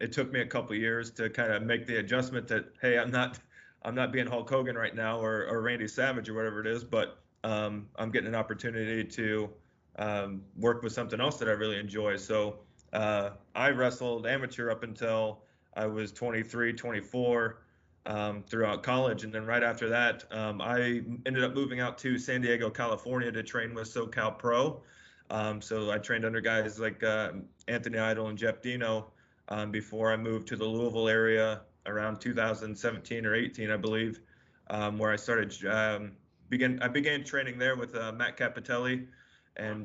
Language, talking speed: English, 185 wpm